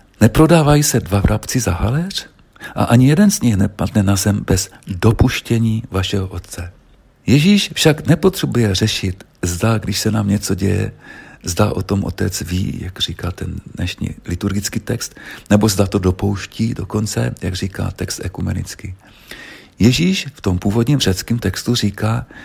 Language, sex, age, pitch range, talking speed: Czech, male, 50-69, 95-115 Hz, 145 wpm